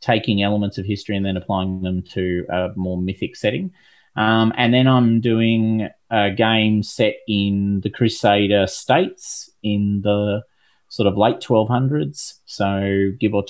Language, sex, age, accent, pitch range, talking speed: English, male, 30-49, Australian, 95-115 Hz, 160 wpm